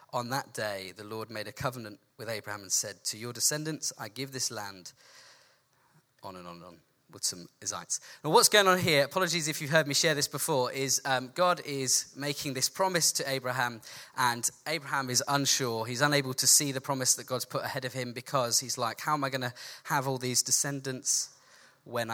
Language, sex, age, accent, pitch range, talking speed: English, male, 10-29, British, 120-145 Hz, 210 wpm